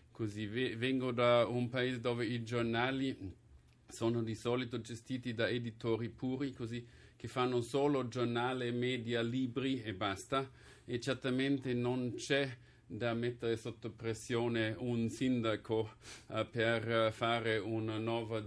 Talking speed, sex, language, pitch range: 120 wpm, male, Italian, 110-125 Hz